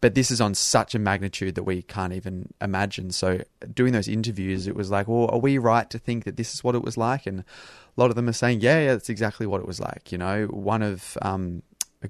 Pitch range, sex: 95-110 Hz, male